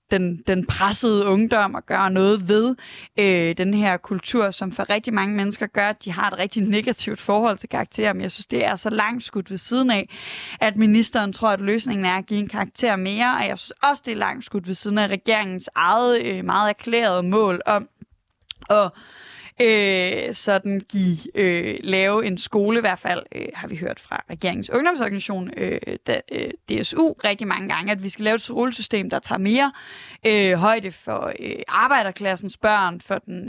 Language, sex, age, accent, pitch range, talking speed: Danish, female, 20-39, native, 195-225 Hz, 195 wpm